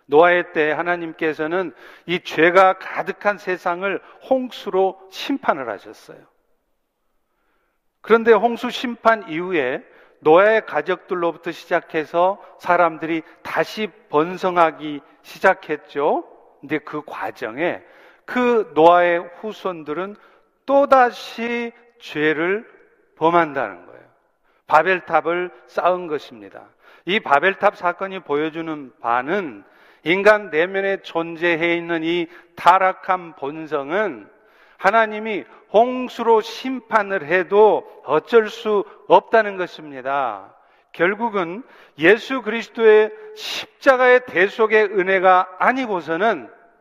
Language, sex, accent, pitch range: Korean, male, native, 170-225 Hz